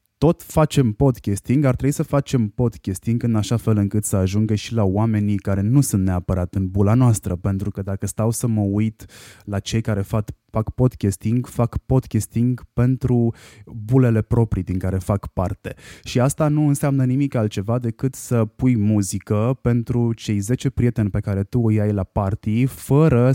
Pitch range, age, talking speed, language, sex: 105-130 Hz, 20-39, 175 wpm, Romanian, male